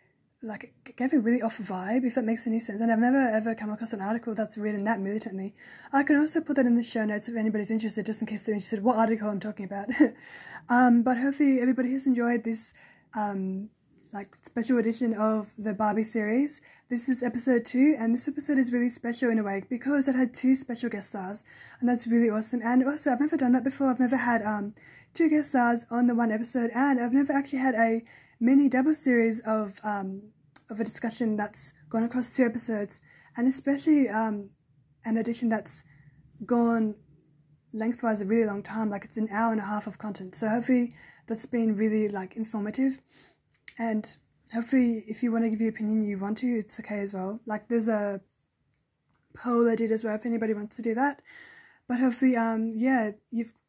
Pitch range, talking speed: 215-250 Hz, 205 wpm